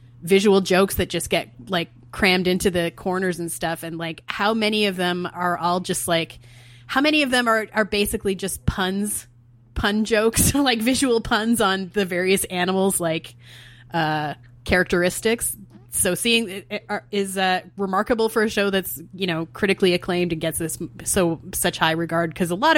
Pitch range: 165-205 Hz